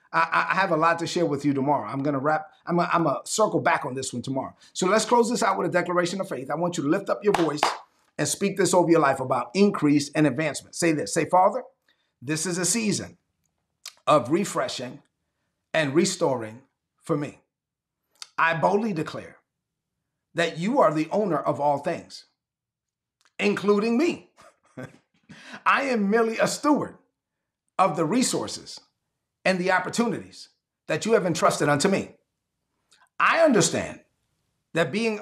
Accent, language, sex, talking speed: American, English, male, 165 wpm